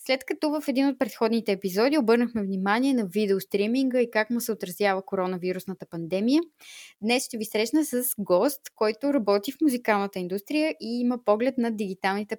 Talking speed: 165 wpm